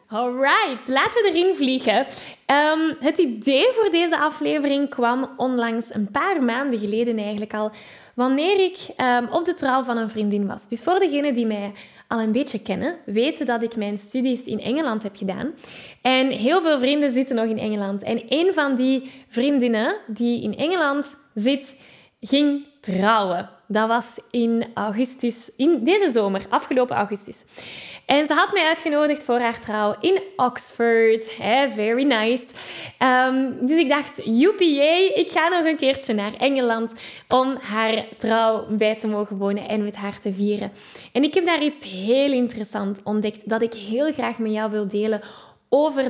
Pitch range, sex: 220-285 Hz, female